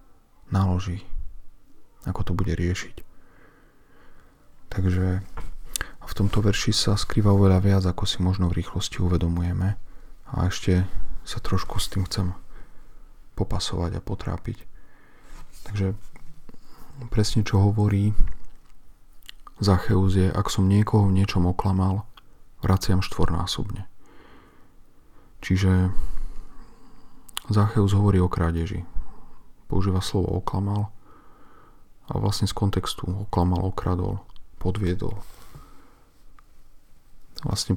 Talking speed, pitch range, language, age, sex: 95 wpm, 90-100 Hz, Slovak, 40-59, male